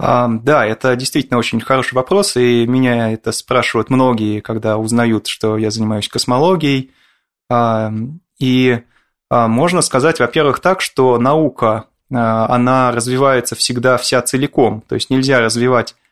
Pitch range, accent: 115-135 Hz, native